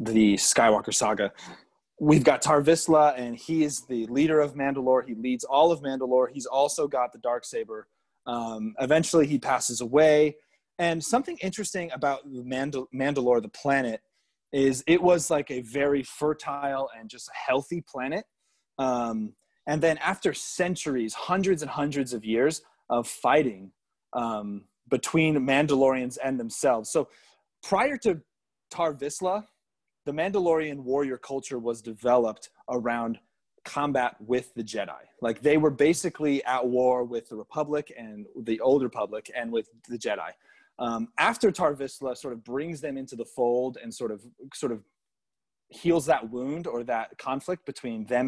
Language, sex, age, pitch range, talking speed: English, male, 30-49, 120-150 Hz, 150 wpm